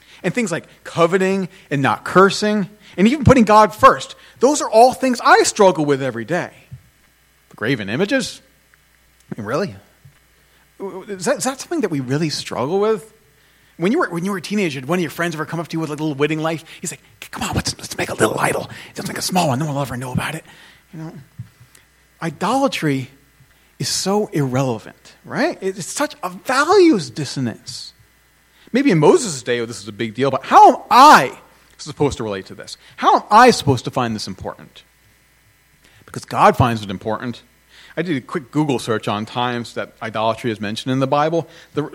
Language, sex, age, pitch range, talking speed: English, male, 40-59, 130-195 Hz, 200 wpm